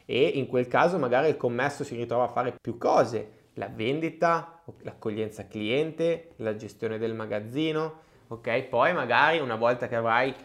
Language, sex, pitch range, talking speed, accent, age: Italian, male, 115-150 Hz, 160 wpm, native, 20-39